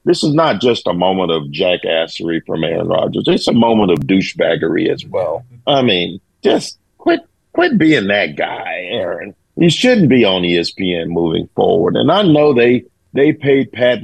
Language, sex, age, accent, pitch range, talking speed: English, male, 40-59, American, 105-140 Hz, 175 wpm